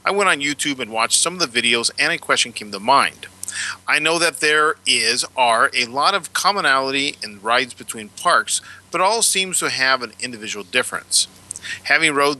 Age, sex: 40-59, male